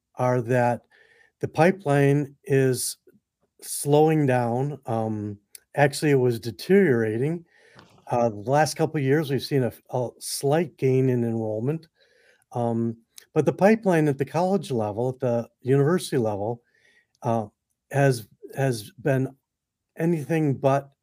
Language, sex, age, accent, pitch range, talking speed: English, male, 50-69, American, 120-150 Hz, 125 wpm